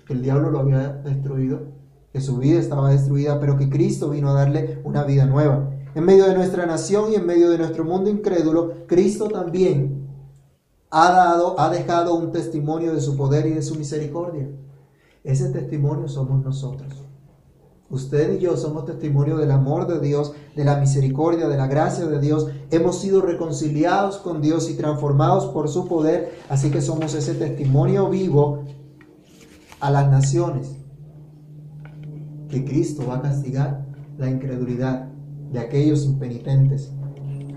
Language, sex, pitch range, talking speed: Spanish, male, 135-155 Hz, 155 wpm